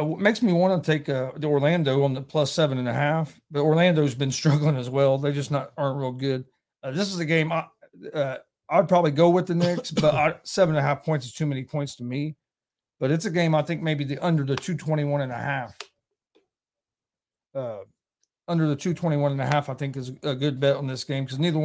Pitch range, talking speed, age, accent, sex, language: 135-155 Hz, 240 wpm, 40-59, American, male, English